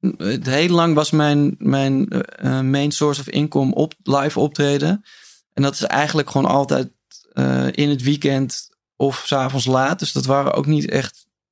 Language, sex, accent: Dutch, male, Dutch